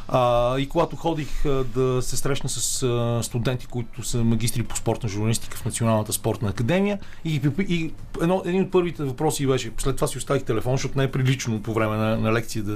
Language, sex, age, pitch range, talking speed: Bulgarian, male, 40-59, 110-140 Hz, 200 wpm